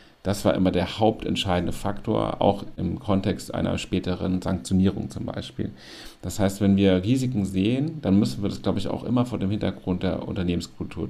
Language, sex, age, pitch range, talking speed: German, male, 40-59, 95-115 Hz, 180 wpm